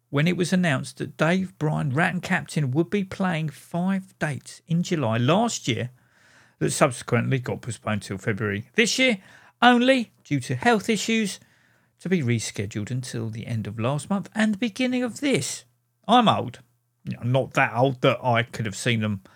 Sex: male